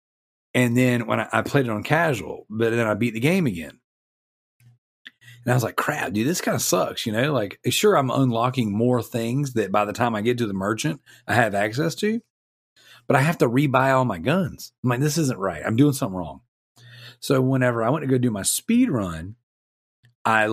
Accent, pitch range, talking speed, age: American, 110-140 Hz, 220 wpm, 40-59